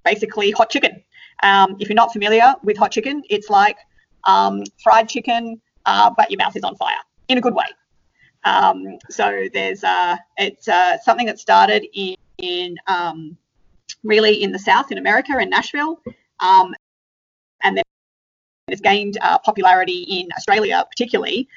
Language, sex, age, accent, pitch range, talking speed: English, female, 30-49, Australian, 185-290 Hz, 160 wpm